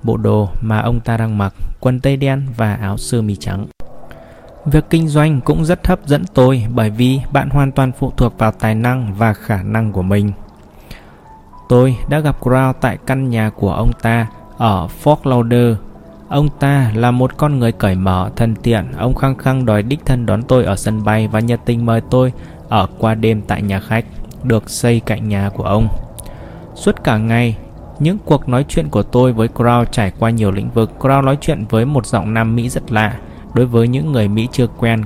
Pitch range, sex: 105-130 Hz, male